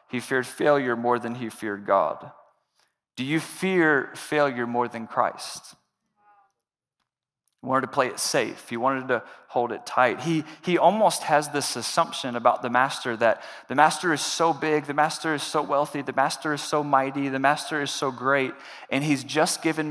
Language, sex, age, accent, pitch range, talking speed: English, male, 30-49, American, 140-190 Hz, 185 wpm